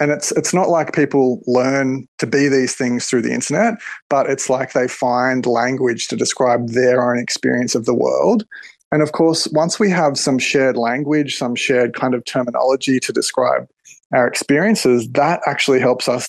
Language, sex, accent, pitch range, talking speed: English, male, Australian, 125-145 Hz, 185 wpm